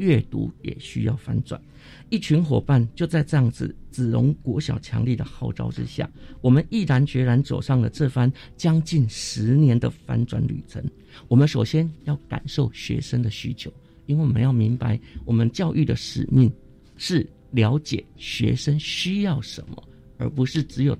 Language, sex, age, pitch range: Chinese, male, 50-69, 120-150 Hz